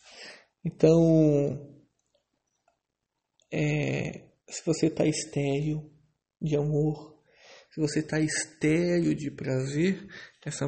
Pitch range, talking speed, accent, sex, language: 145-185 Hz, 85 wpm, Brazilian, male, Portuguese